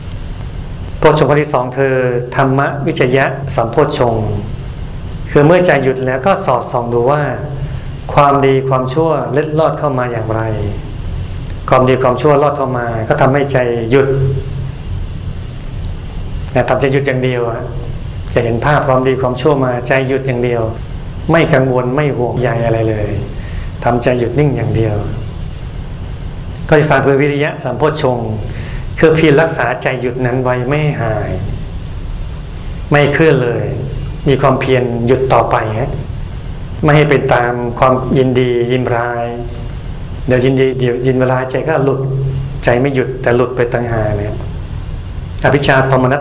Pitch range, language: 120-135 Hz, Thai